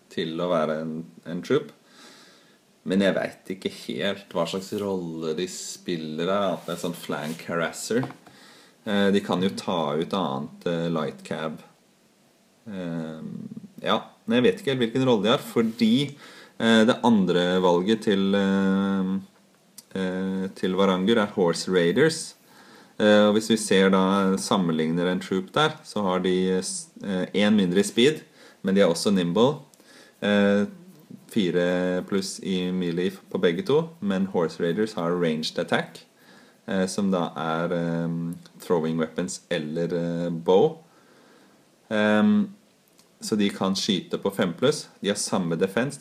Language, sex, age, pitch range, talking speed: English, male, 30-49, 90-110 Hz, 150 wpm